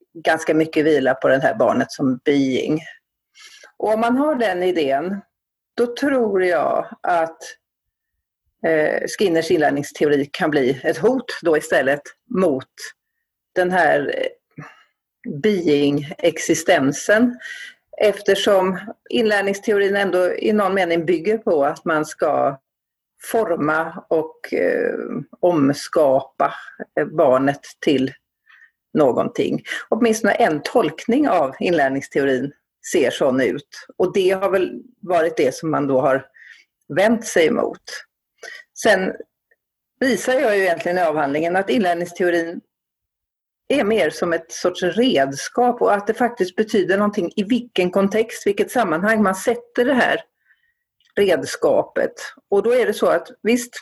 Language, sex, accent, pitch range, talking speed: Swedish, female, native, 165-245 Hz, 120 wpm